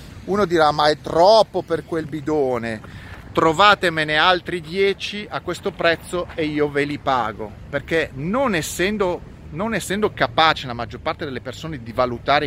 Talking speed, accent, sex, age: 155 wpm, native, male, 40-59